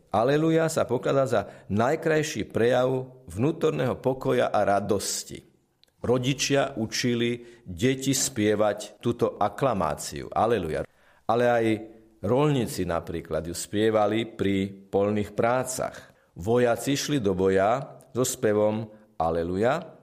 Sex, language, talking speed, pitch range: male, Slovak, 100 wpm, 100-135 Hz